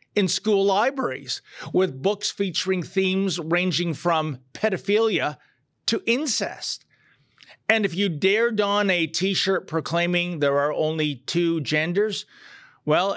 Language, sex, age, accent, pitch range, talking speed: English, male, 40-59, American, 150-210 Hz, 120 wpm